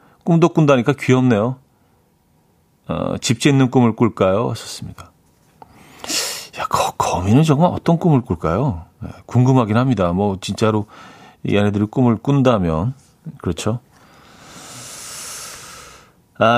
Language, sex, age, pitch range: Korean, male, 40-59, 110-150 Hz